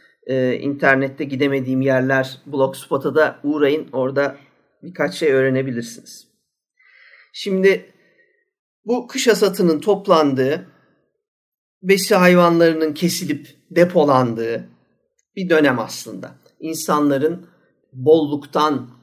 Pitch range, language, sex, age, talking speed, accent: 140-175 Hz, Turkish, male, 50-69, 80 wpm, native